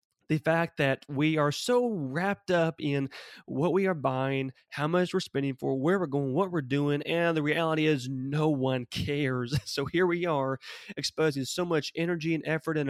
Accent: American